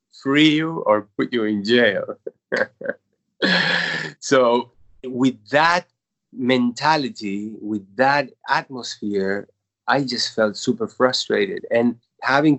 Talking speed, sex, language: 100 wpm, male, English